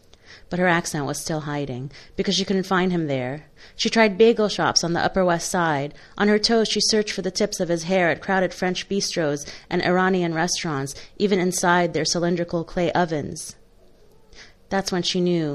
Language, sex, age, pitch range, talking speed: English, female, 30-49, 165-200 Hz, 190 wpm